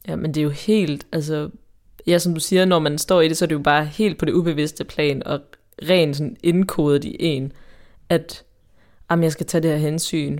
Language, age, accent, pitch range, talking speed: Danish, 20-39, native, 145-175 Hz, 225 wpm